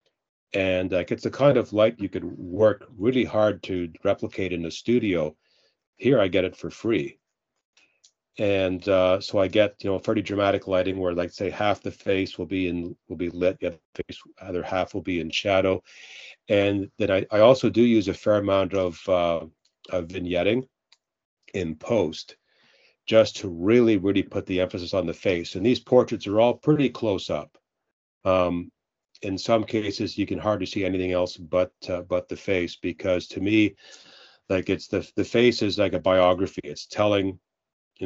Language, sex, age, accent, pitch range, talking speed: English, male, 40-59, American, 90-110 Hz, 190 wpm